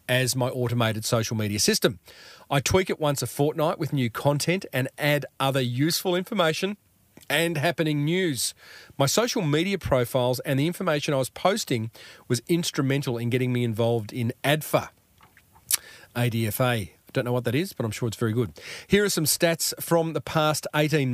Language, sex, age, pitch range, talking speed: English, male, 40-59, 130-165 Hz, 175 wpm